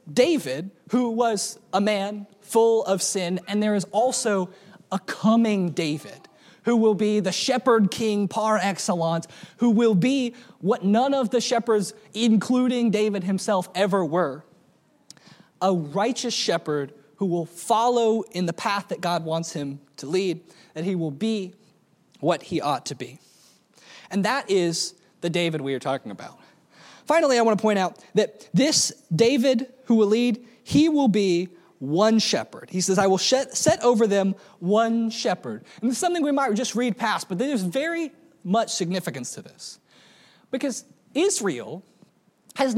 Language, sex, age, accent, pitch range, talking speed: English, male, 20-39, American, 190-250 Hz, 160 wpm